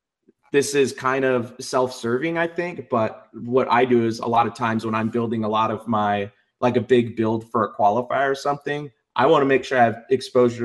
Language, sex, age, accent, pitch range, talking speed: English, male, 30-49, American, 110-130 Hz, 225 wpm